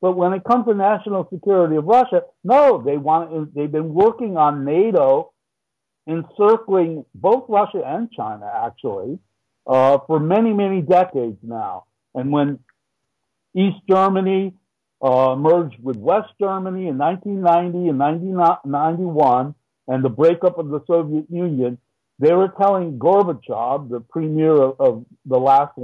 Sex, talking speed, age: male, 135 wpm, 60-79